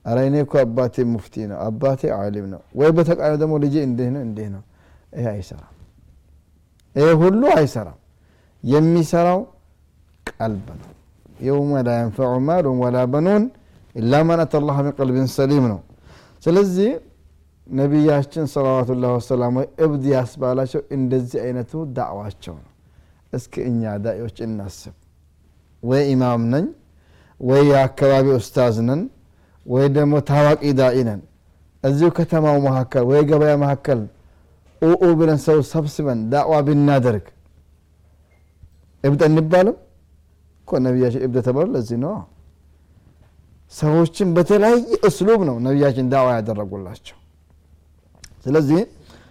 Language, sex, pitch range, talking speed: Amharic, male, 95-150 Hz, 70 wpm